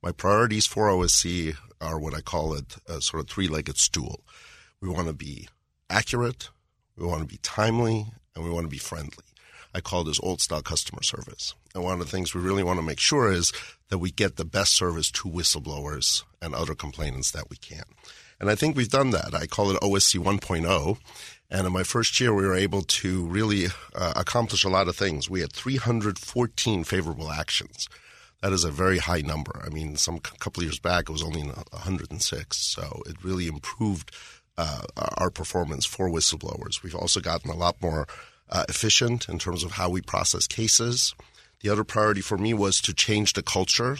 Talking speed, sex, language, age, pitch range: 195 wpm, male, English, 50-69, 80-100 Hz